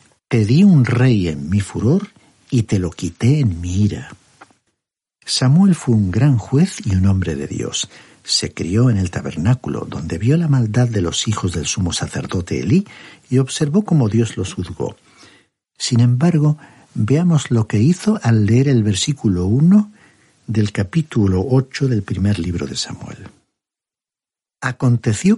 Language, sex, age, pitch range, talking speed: Spanish, male, 60-79, 105-150 Hz, 155 wpm